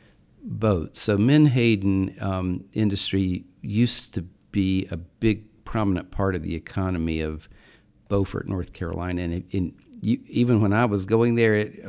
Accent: American